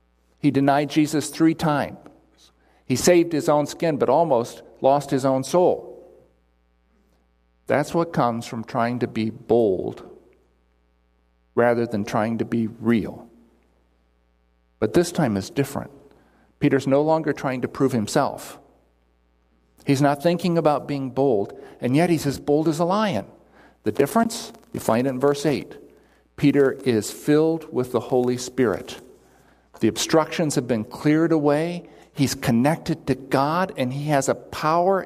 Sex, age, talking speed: male, 50-69, 145 wpm